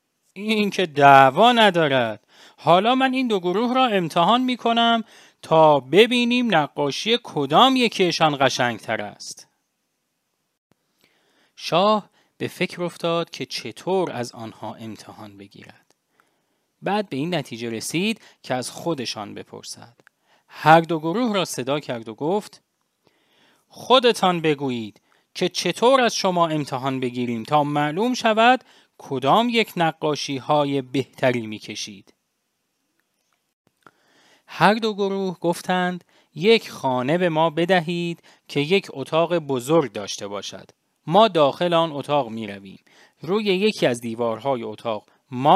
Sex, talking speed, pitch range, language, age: male, 120 wpm, 135-205 Hz, English, 30-49